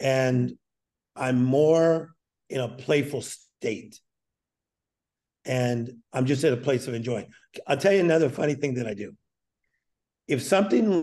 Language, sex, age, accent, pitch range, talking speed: English, male, 50-69, American, 125-150 Hz, 140 wpm